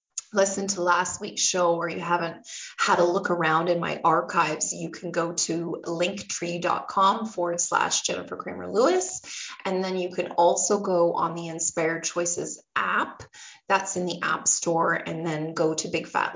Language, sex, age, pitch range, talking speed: English, female, 20-39, 175-220 Hz, 170 wpm